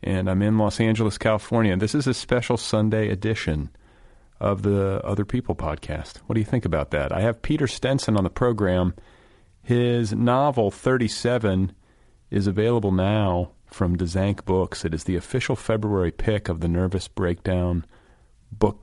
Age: 40-59